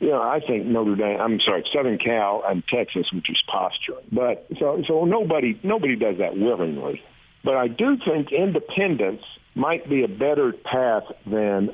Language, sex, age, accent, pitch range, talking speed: English, male, 60-79, American, 95-140 Hz, 175 wpm